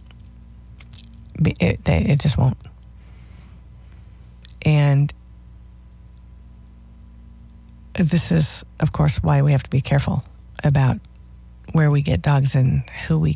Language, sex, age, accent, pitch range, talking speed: English, female, 40-59, American, 100-165 Hz, 105 wpm